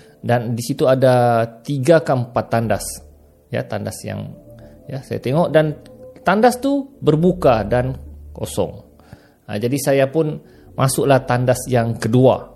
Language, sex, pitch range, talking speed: Malay, male, 105-140 Hz, 135 wpm